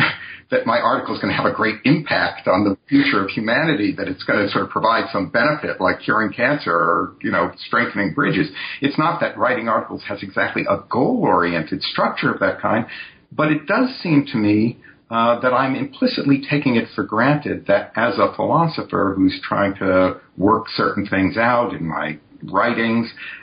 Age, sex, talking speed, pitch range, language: 50-69, male, 185 wpm, 105-145 Hz, English